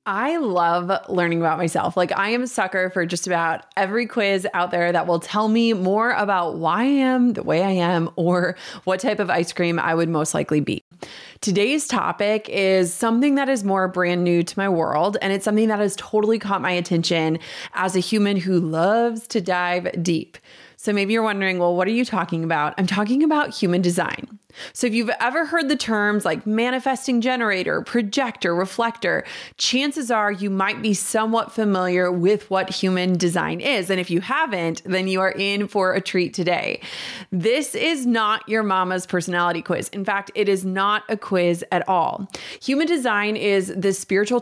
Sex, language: female, English